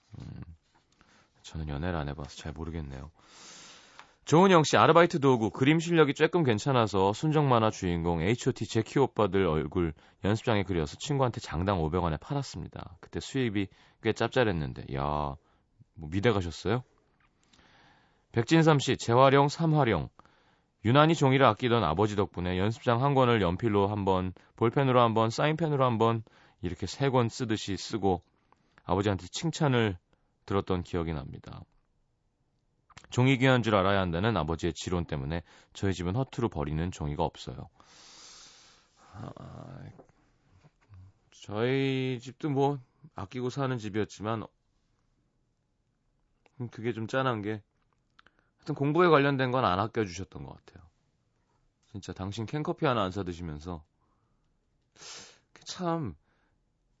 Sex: male